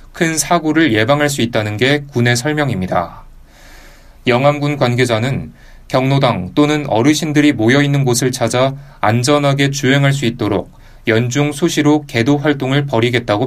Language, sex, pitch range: Korean, male, 115-145 Hz